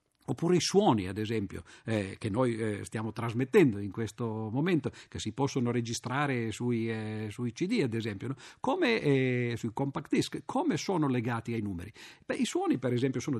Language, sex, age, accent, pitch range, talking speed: Italian, male, 50-69, native, 115-165 Hz, 185 wpm